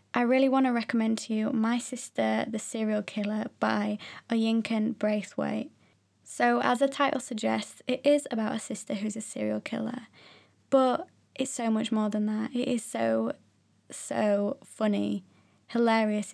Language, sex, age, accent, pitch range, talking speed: English, female, 20-39, British, 205-240 Hz, 155 wpm